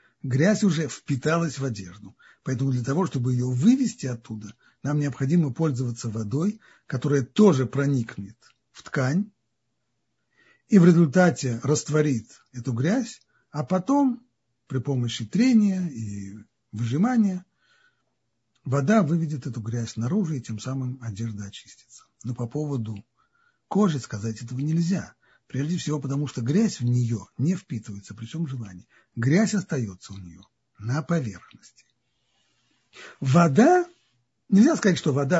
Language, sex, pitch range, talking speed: Russian, male, 120-180 Hz, 125 wpm